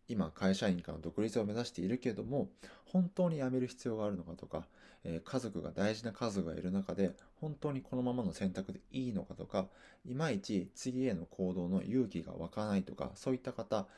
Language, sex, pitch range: Japanese, male, 85-135 Hz